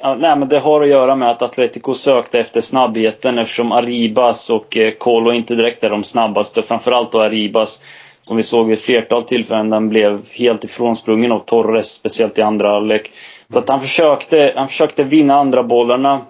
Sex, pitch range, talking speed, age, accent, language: male, 110-125 Hz, 185 wpm, 20-39, native, Swedish